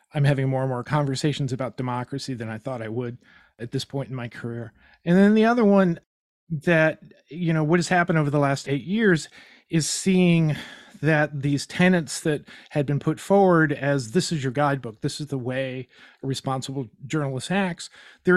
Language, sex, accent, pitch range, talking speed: English, male, American, 140-170 Hz, 195 wpm